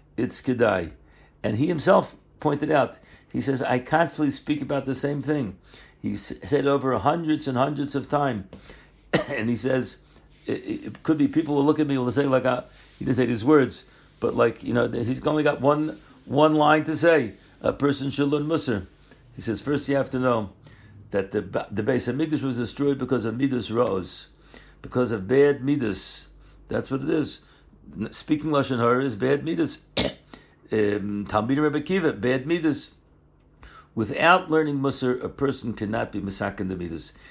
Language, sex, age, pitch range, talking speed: English, male, 60-79, 115-145 Hz, 170 wpm